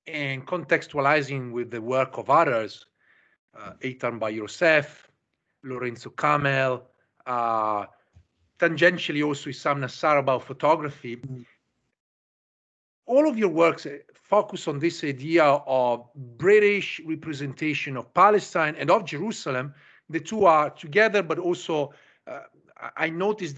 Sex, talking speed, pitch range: male, 115 wpm, 130-175 Hz